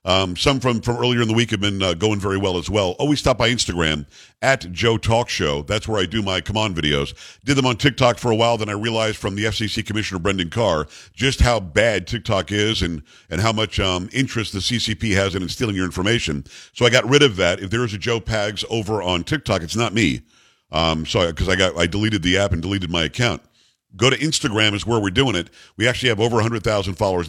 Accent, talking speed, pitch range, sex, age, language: American, 250 wpm, 95-125 Hz, male, 50-69, English